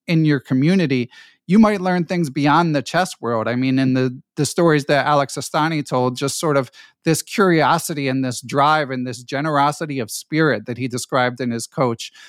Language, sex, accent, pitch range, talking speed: English, male, American, 130-160 Hz, 195 wpm